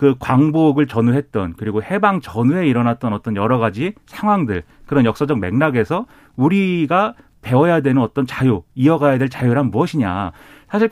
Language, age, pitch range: Korean, 40-59, 120-170 Hz